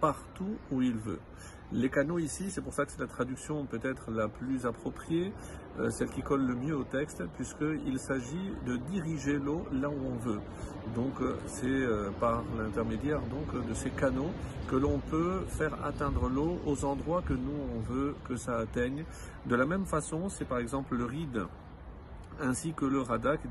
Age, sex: 50-69, male